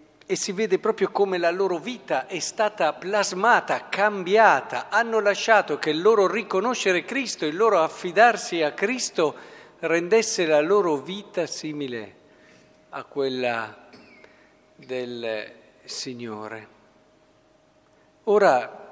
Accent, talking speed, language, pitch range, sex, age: native, 110 wpm, Italian, 145-185 Hz, male, 50-69